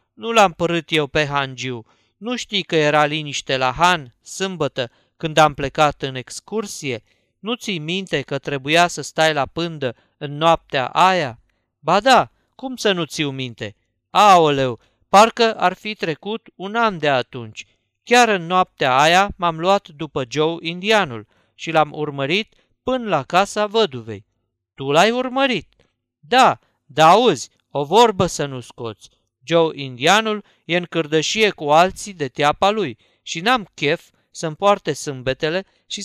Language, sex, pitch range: Romanian, male, 140-195 Hz